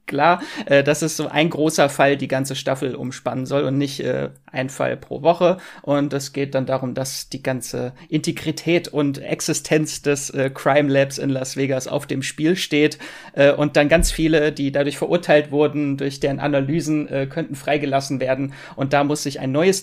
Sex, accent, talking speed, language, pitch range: male, German, 195 wpm, German, 135-155 Hz